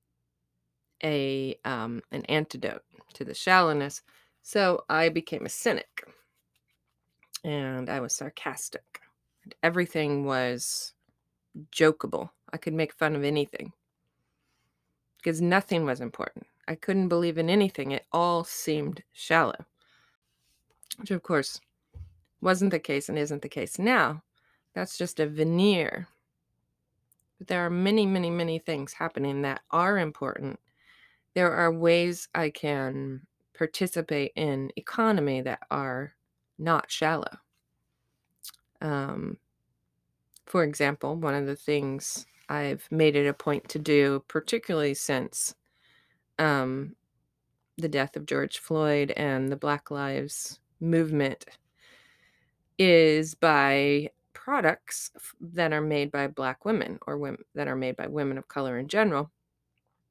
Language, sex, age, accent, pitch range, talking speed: English, female, 30-49, American, 135-165 Hz, 120 wpm